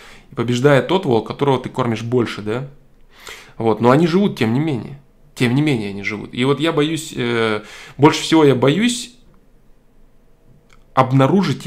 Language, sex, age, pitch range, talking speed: Russian, male, 20-39, 120-150 Hz, 145 wpm